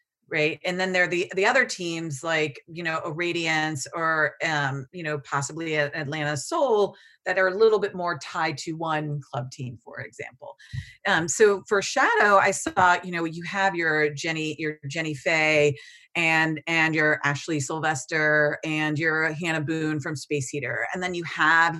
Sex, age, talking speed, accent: female, 40-59, 180 wpm, American